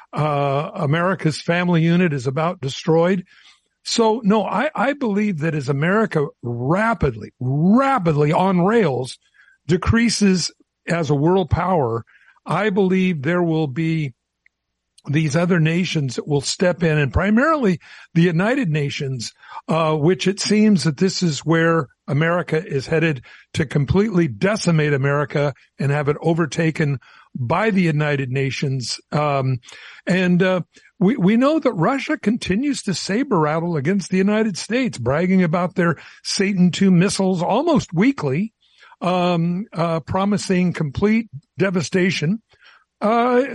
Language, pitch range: English, 155-200 Hz